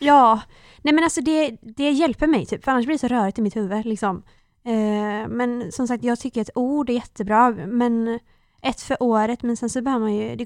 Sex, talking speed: female, 230 wpm